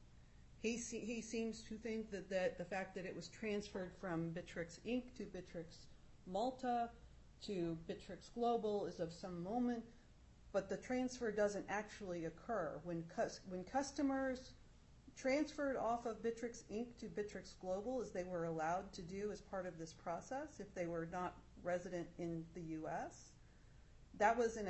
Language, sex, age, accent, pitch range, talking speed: English, female, 40-59, American, 165-210 Hz, 165 wpm